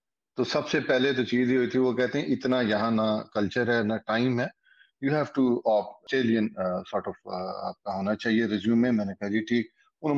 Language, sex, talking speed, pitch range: Urdu, male, 210 wpm, 110-125 Hz